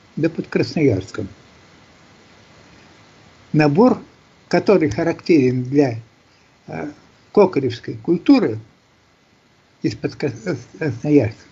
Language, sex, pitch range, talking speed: Russian, male, 120-160 Hz, 65 wpm